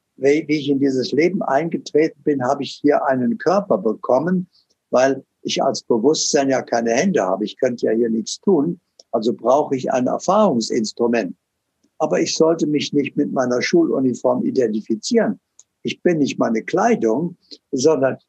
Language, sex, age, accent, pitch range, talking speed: German, male, 60-79, German, 125-160 Hz, 155 wpm